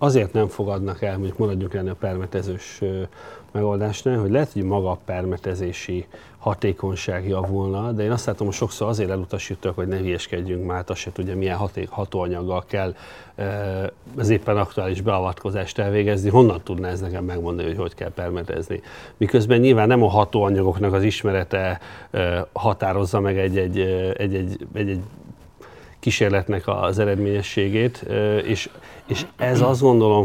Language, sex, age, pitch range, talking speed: Hungarian, male, 30-49, 95-105 Hz, 135 wpm